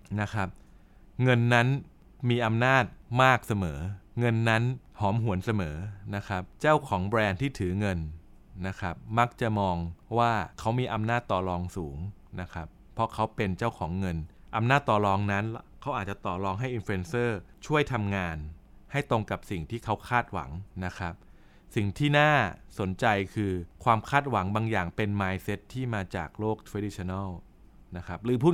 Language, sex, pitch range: Thai, male, 95-120 Hz